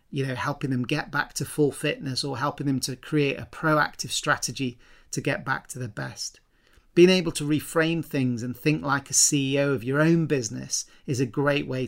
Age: 40-59